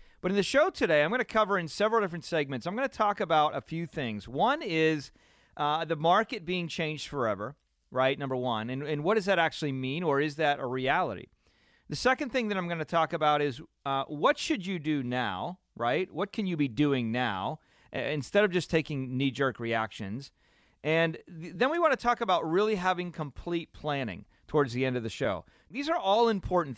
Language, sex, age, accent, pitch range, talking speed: English, male, 40-59, American, 125-175 Hz, 215 wpm